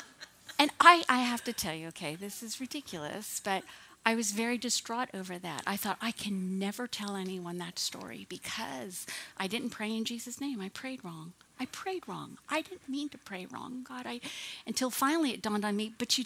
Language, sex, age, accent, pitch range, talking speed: English, female, 50-69, American, 185-255 Hz, 205 wpm